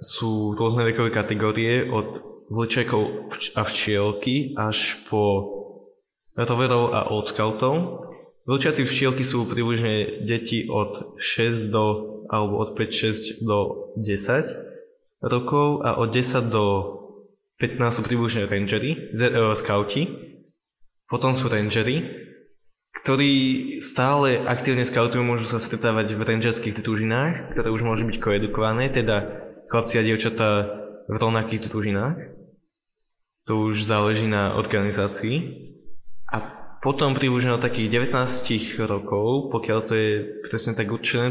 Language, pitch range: Slovak, 105-125 Hz